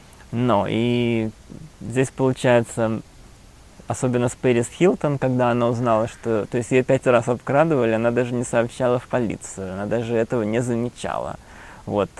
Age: 20-39